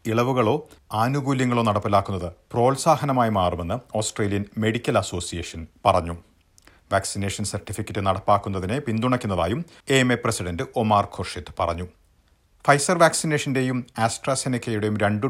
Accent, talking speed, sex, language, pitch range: native, 90 wpm, male, Malayalam, 95-125 Hz